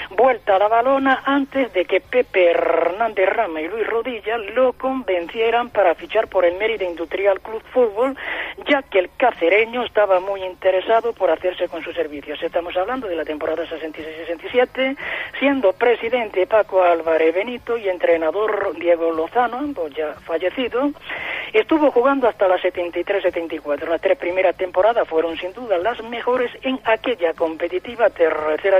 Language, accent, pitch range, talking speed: Spanish, Spanish, 170-240 Hz, 145 wpm